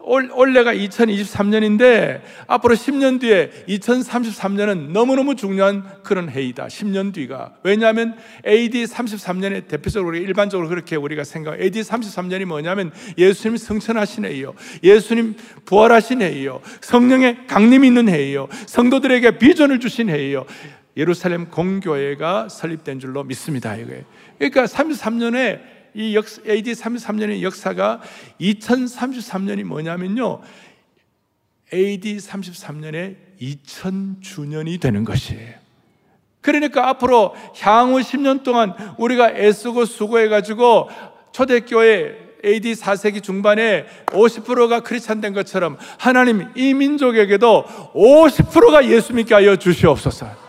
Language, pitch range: Korean, 185-235 Hz